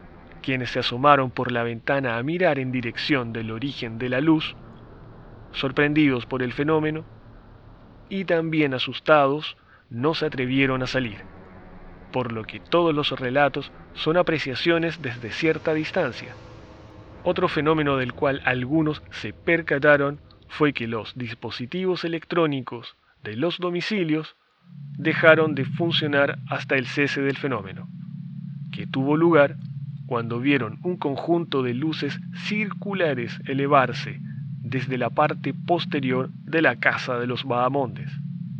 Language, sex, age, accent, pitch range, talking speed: Spanish, male, 30-49, Argentinian, 130-160 Hz, 125 wpm